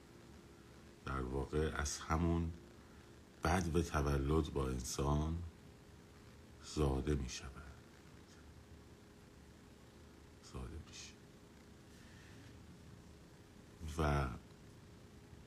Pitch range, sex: 70-85 Hz, male